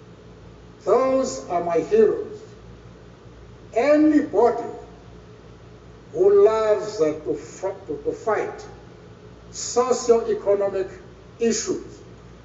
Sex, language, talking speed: male, English, 55 wpm